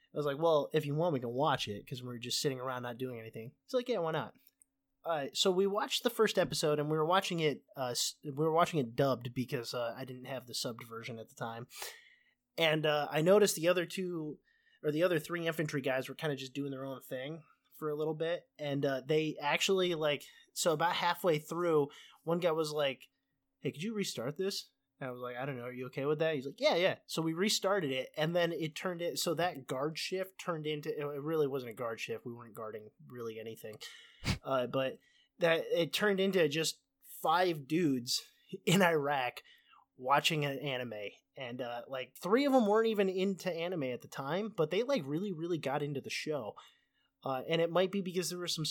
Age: 20-39